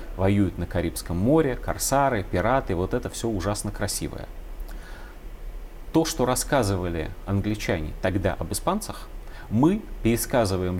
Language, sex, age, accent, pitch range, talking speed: Russian, male, 30-49, native, 90-125 Hz, 110 wpm